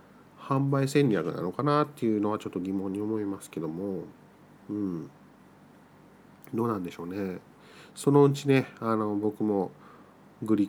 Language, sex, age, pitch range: Japanese, male, 40-59, 105-145 Hz